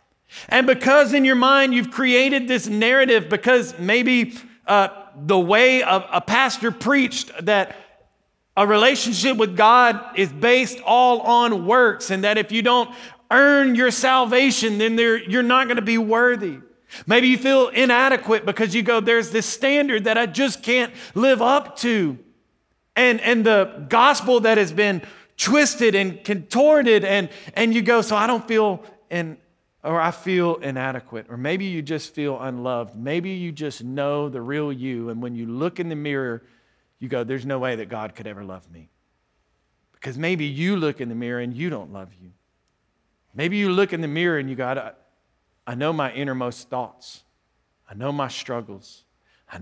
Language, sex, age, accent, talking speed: English, male, 40-59, American, 175 wpm